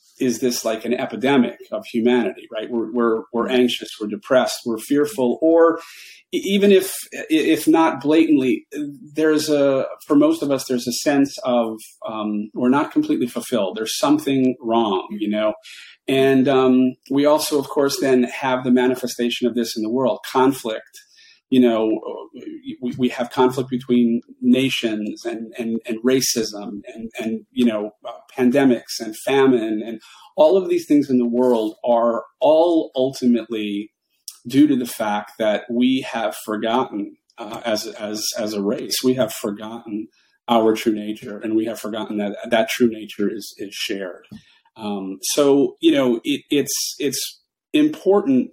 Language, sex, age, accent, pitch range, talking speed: English, male, 40-59, American, 115-150 Hz, 155 wpm